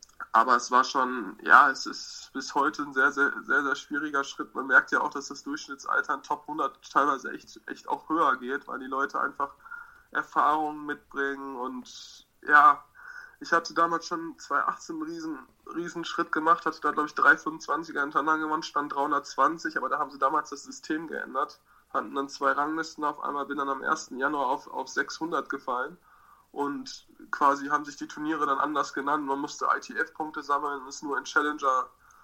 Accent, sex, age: German, male, 20-39